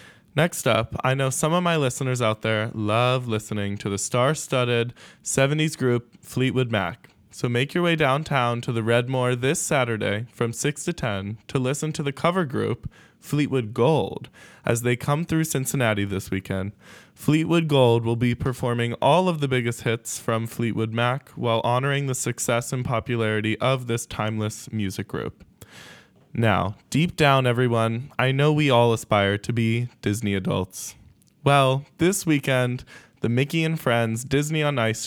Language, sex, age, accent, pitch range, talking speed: English, male, 20-39, American, 110-140 Hz, 165 wpm